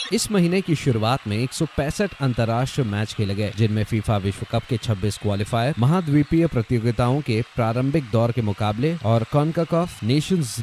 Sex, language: male, Hindi